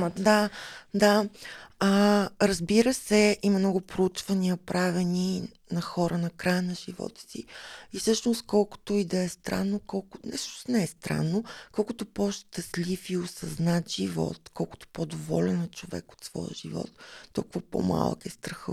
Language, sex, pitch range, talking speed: Bulgarian, female, 170-200 Hz, 140 wpm